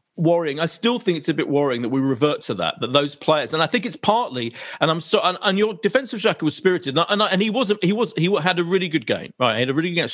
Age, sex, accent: 40-59, male, British